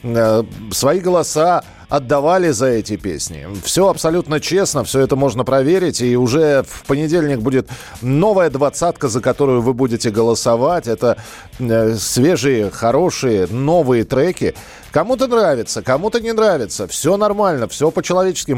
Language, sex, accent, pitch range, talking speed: Russian, male, native, 130-175 Hz, 125 wpm